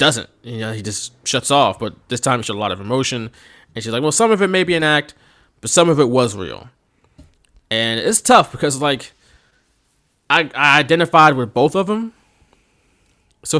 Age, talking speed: 20-39, 200 wpm